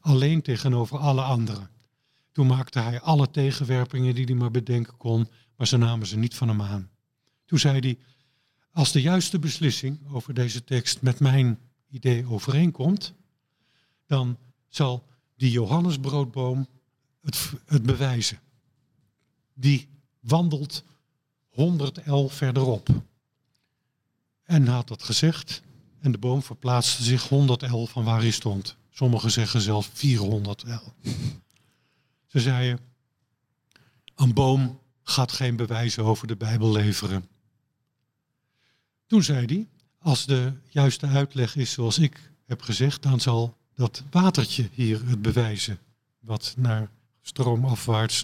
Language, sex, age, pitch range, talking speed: Dutch, male, 50-69, 120-140 Hz, 125 wpm